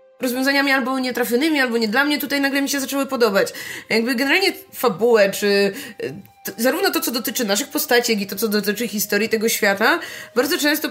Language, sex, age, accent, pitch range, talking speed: Polish, female, 20-39, native, 230-280 Hz, 180 wpm